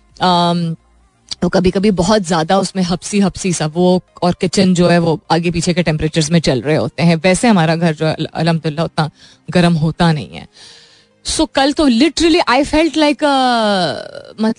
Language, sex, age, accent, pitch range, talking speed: Hindi, female, 20-39, native, 175-240 Hz, 140 wpm